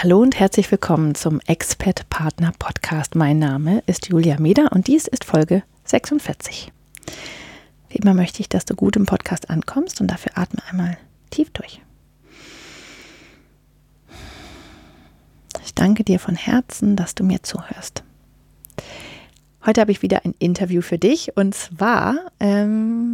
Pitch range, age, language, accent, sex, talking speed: 180-220 Hz, 30-49, German, German, female, 135 wpm